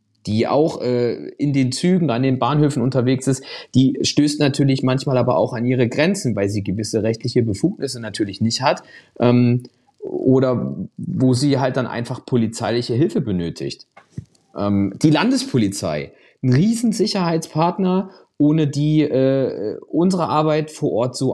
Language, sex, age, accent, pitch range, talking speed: German, male, 30-49, German, 120-155 Hz, 145 wpm